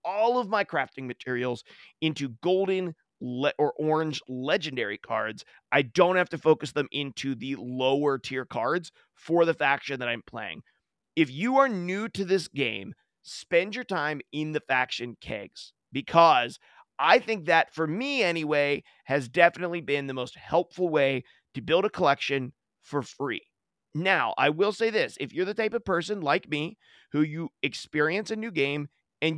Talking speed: 170 wpm